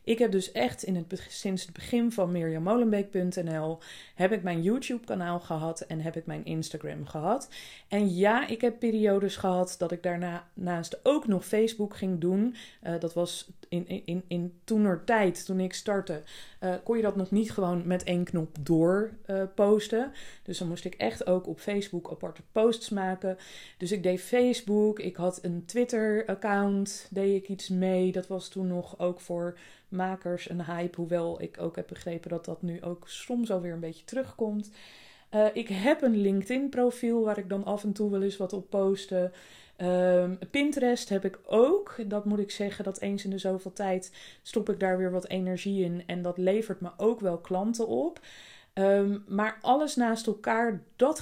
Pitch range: 175-215 Hz